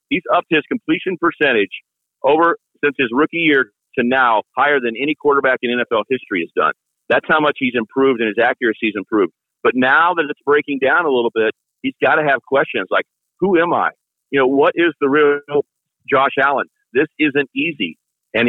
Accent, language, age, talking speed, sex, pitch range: American, English, 40-59, 200 wpm, male, 125-160 Hz